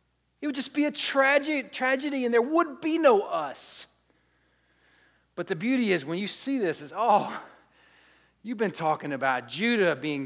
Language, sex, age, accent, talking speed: English, male, 50-69, American, 170 wpm